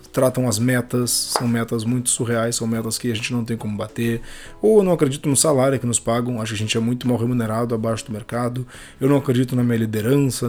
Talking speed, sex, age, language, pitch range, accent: 240 wpm, male, 20-39, Portuguese, 115-140 Hz, Brazilian